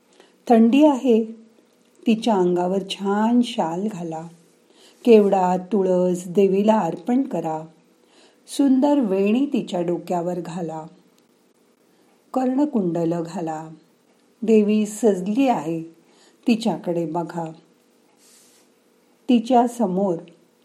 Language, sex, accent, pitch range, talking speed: Marathi, female, native, 175-240 Hz, 50 wpm